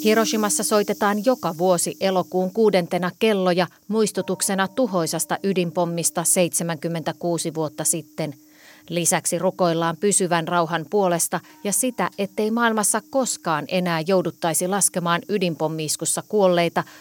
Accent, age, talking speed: native, 30-49, 100 wpm